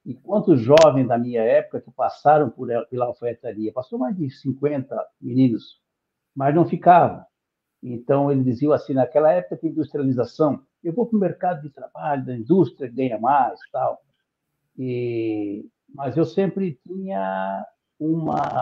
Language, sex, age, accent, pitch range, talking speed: Portuguese, male, 60-79, Brazilian, 130-175 Hz, 150 wpm